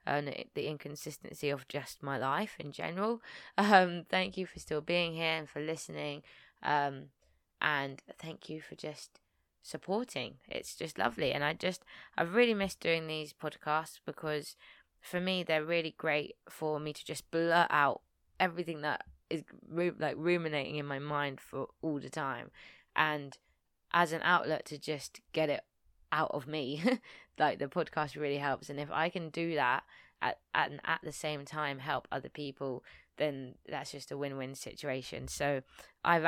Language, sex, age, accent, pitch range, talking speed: English, female, 20-39, British, 140-165 Hz, 170 wpm